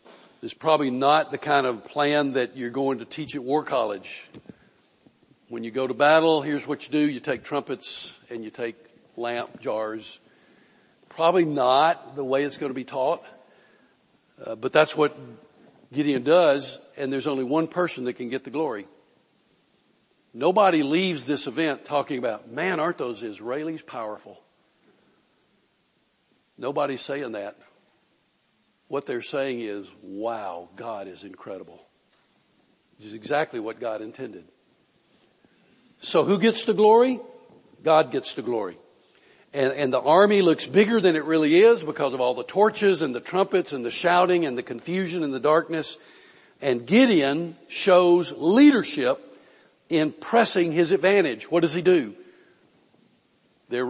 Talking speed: 150 wpm